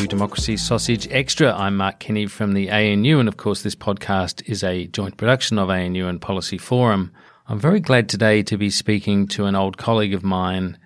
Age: 40-59